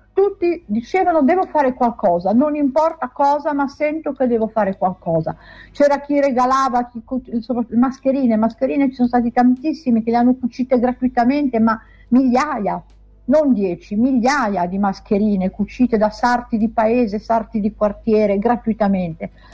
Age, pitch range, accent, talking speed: 50-69, 220-285 Hz, native, 140 wpm